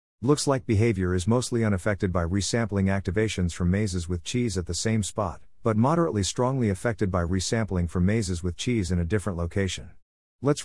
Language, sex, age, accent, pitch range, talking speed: English, male, 50-69, American, 90-115 Hz, 180 wpm